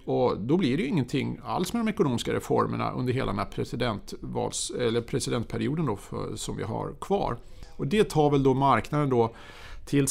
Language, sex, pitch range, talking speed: Swedish, male, 120-155 Hz, 185 wpm